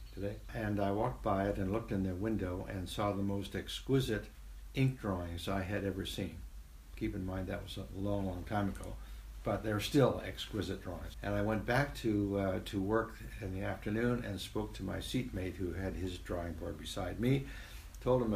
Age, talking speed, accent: 60-79, 200 wpm, American